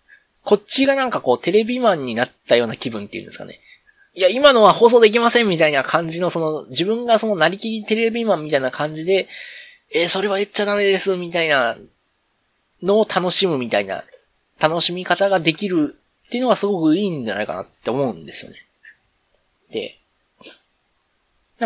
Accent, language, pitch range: native, Japanese, 145-230 Hz